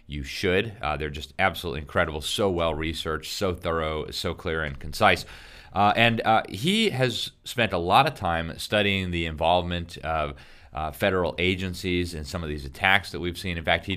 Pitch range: 80-95 Hz